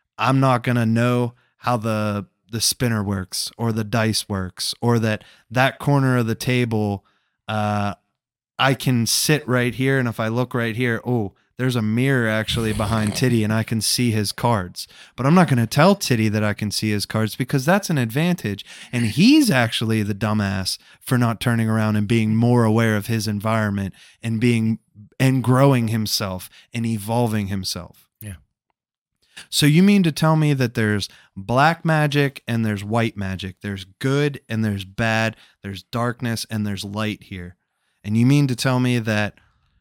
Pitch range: 105-130 Hz